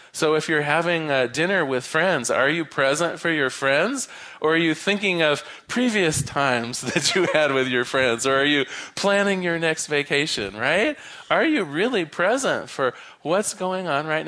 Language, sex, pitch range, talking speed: English, male, 135-185 Hz, 180 wpm